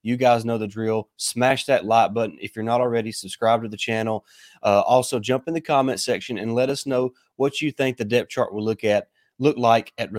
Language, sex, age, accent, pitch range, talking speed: English, male, 30-49, American, 105-120 Hz, 235 wpm